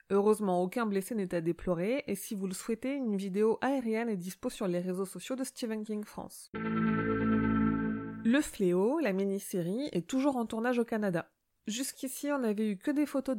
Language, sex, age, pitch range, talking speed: French, female, 30-49, 190-240 Hz, 185 wpm